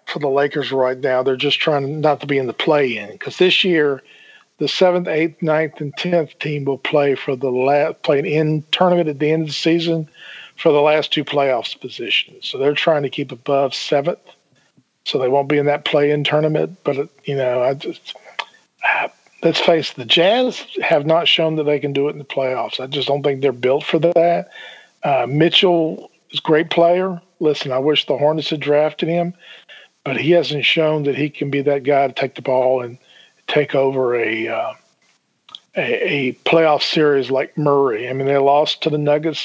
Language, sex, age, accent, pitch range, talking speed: English, male, 50-69, American, 140-165 Hz, 205 wpm